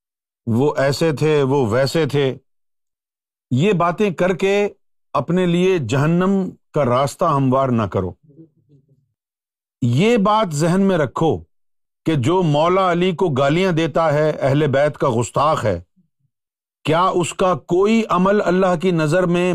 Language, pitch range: Urdu, 130-175 Hz